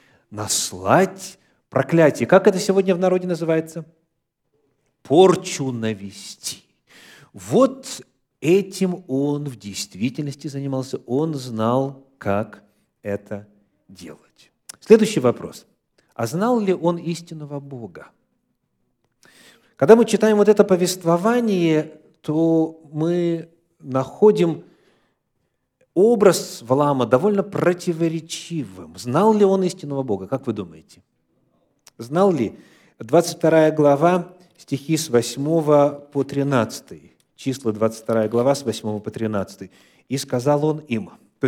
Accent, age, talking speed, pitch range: native, 50-69, 105 wpm, 125-180 Hz